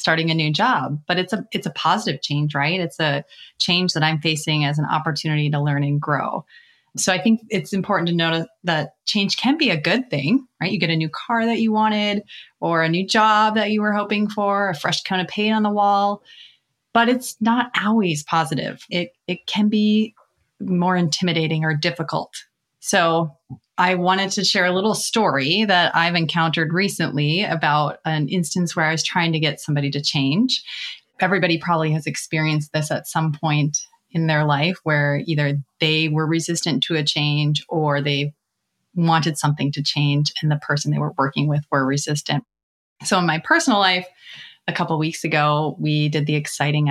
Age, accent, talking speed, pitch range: 30-49, American, 190 wpm, 150-195 Hz